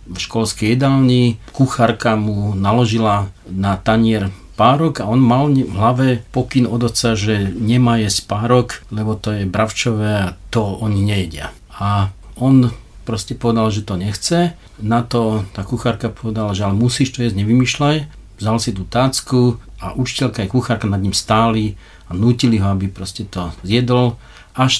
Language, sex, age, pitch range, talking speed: Slovak, male, 50-69, 100-120 Hz, 160 wpm